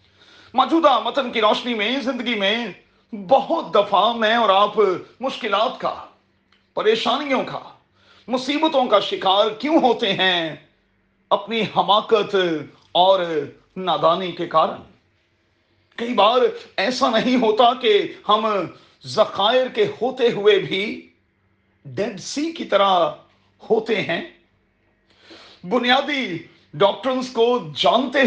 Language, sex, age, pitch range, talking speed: Urdu, male, 40-59, 160-240 Hz, 105 wpm